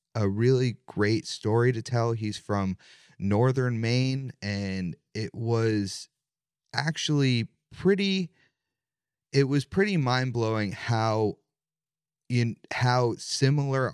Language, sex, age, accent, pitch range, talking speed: English, male, 30-49, American, 100-125 Hz, 105 wpm